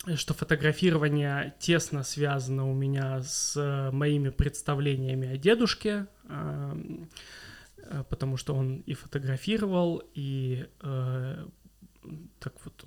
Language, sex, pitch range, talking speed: Russian, male, 135-160 Hz, 90 wpm